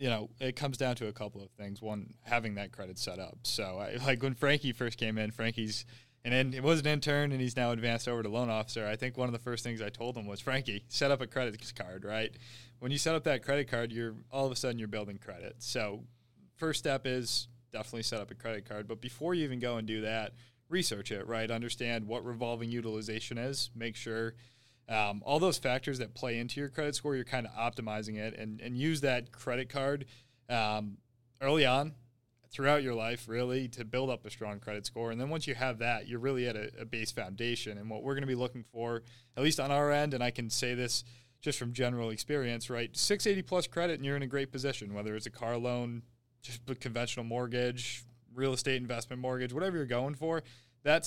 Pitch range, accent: 115-130 Hz, American